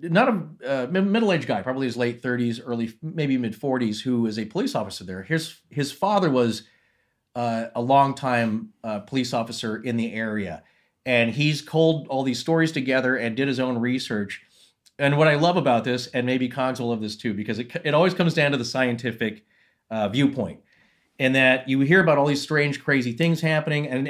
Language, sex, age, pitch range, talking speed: English, male, 40-59, 120-150 Hz, 195 wpm